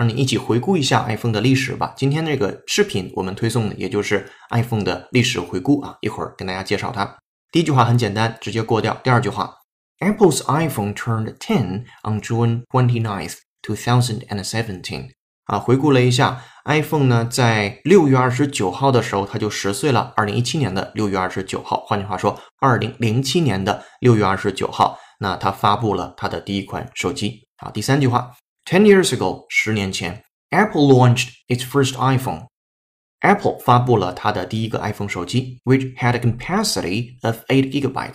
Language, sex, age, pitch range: Chinese, male, 20-39, 100-130 Hz